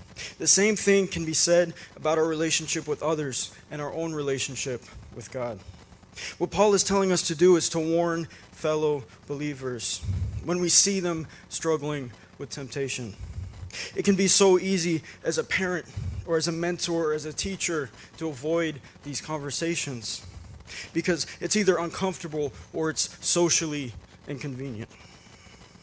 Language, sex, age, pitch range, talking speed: English, male, 20-39, 125-175 Hz, 150 wpm